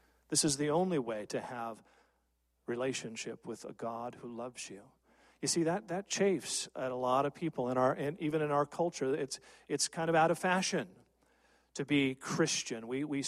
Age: 50-69